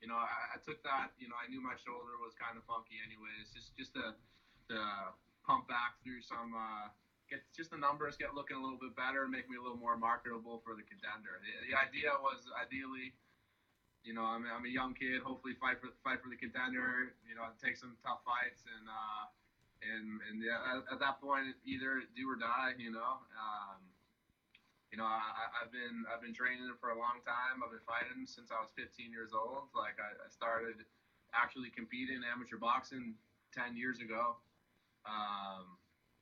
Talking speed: 200 wpm